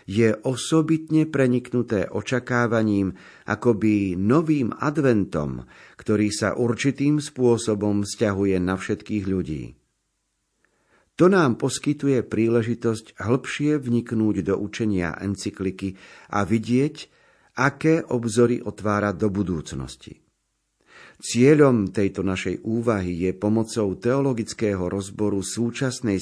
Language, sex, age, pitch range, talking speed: Slovak, male, 50-69, 100-125 Hz, 90 wpm